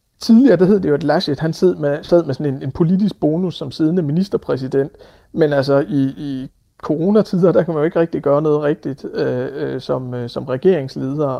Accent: native